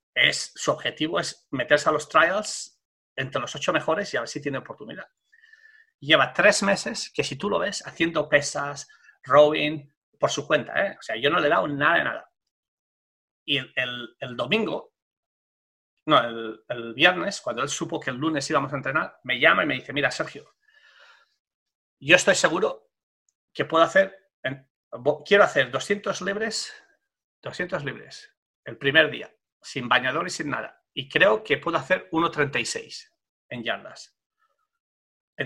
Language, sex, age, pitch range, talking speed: English, male, 30-49, 130-195 Hz, 160 wpm